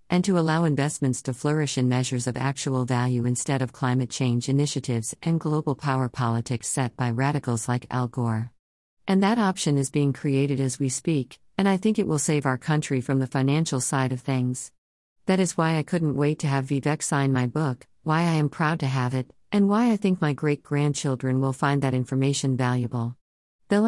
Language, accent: English, American